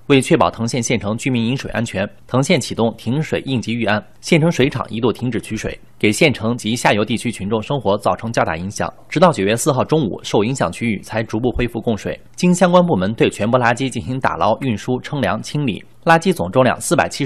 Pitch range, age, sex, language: 110-145 Hz, 30-49, male, Chinese